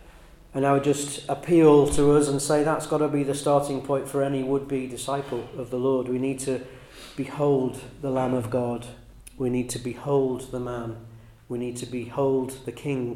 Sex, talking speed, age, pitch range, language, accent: male, 195 wpm, 40-59, 120-140 Hz, English, British